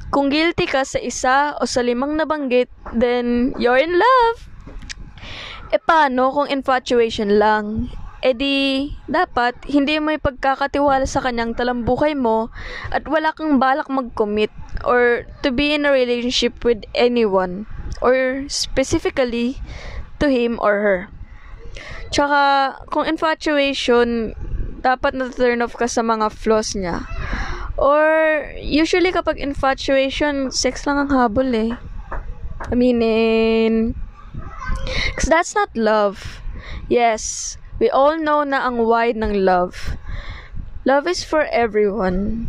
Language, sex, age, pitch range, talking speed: Filipino, female, 20-39, 230-280 Hz, 120 wpm